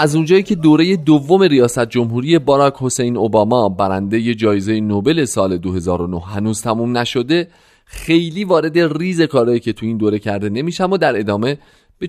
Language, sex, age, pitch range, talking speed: Persian, male, 30-49, 100-145 Hz, 160 wpm